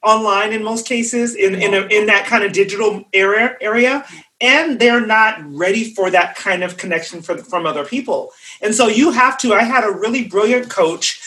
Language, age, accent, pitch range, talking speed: English, 30-49, American, 185-250 Hz, 200 wpm